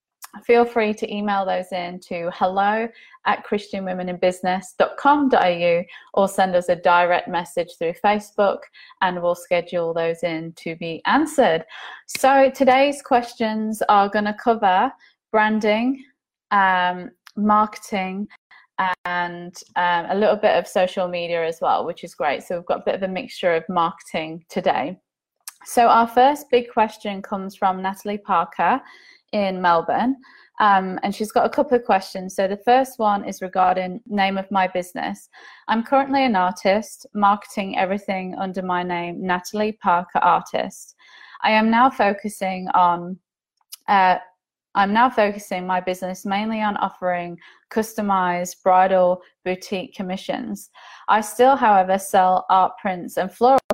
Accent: British